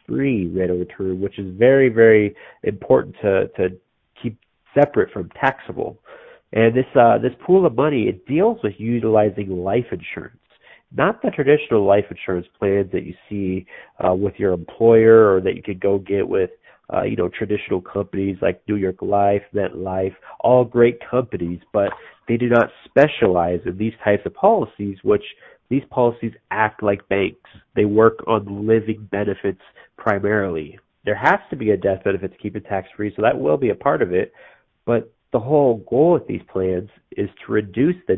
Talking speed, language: 180 wpm, English